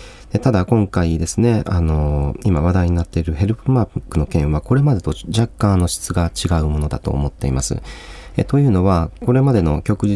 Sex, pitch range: male, 75-115 Hz